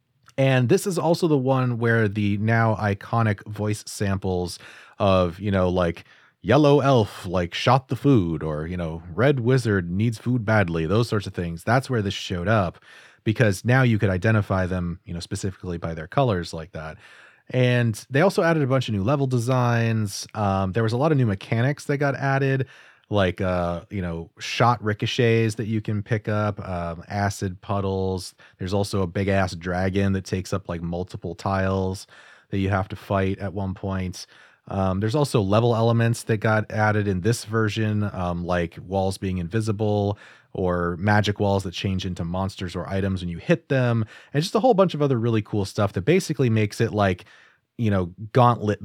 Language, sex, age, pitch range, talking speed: English, male, 30-49, 95-120 Hz, 190 wpm